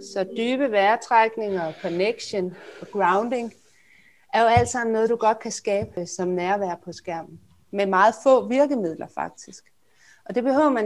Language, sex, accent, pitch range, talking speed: Danish, female, native, 180-225 Hz, 160 wpm